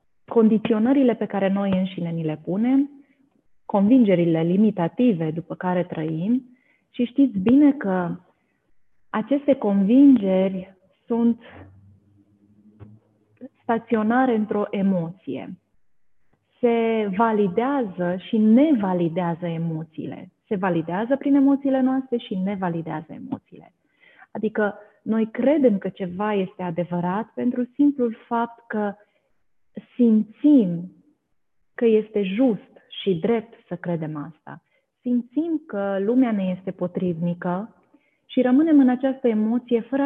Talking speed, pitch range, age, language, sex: 105 wpm, 180-245 Hz, 30-49, Romanian, female